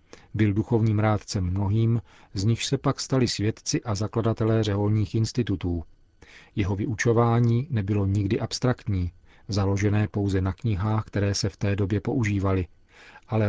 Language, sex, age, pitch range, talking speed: Czech, male, 40-59, 100-120 Hz, 135 wpm